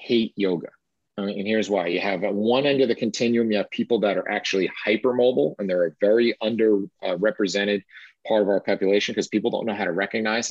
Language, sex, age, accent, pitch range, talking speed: English, male, 30-49, American, 95-115 Hz, 205 wpm